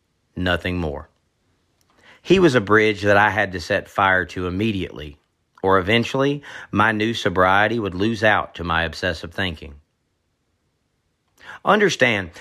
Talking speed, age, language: 130 wpm, 40-59, English